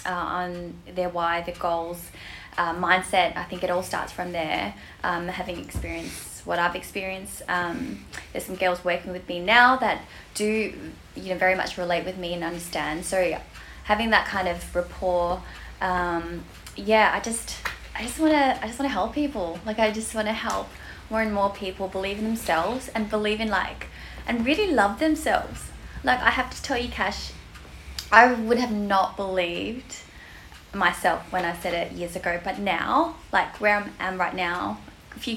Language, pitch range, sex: English, 180-245 Hz, female